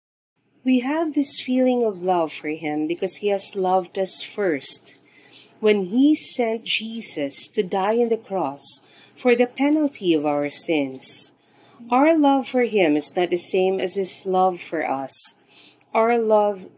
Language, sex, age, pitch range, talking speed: English, female, 40-59, 175-245 Hz, 155 wpm